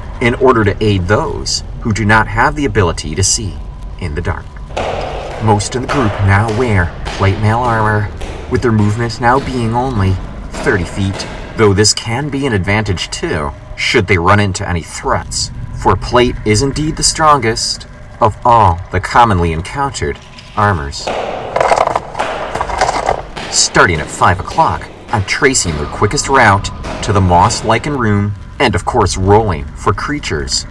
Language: English